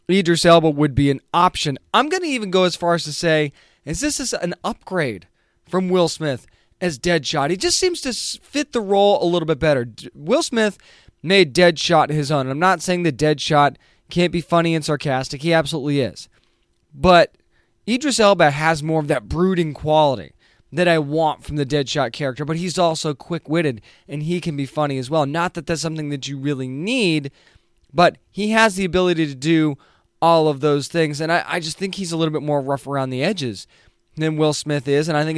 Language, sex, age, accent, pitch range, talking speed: English, male, 20-39, American, 145-175 Hz, 210 wpm